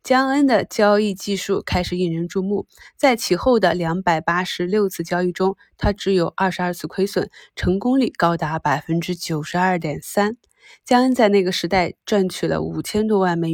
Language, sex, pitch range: Chinese, female, 175-210 Hz